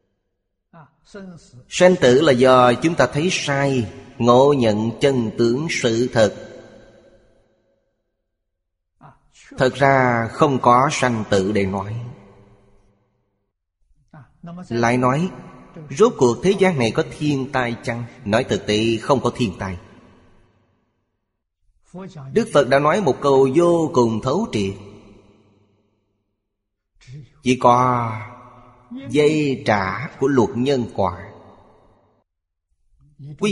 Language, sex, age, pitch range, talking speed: Vietnamese, male, 30-49, 100-140 Hz, 105 wpm